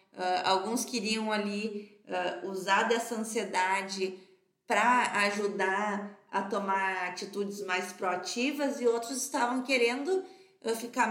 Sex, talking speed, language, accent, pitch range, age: female, 95 wpm, Portuguese, Brazilian, 185-235 Hz, 20-39